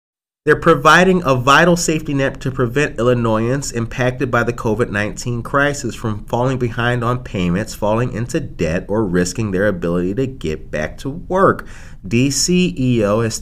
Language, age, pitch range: English, 30-49, 110-140 Hz